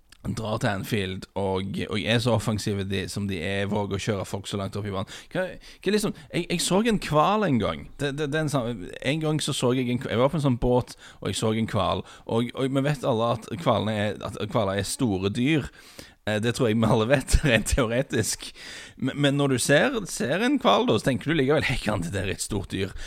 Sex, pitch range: male, 100-130 Hz